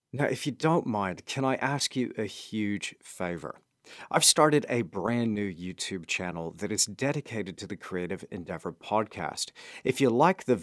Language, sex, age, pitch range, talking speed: English, male, 40-59, 100-145 Hz, 175 wpm